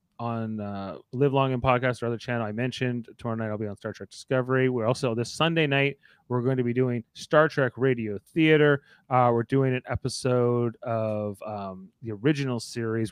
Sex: male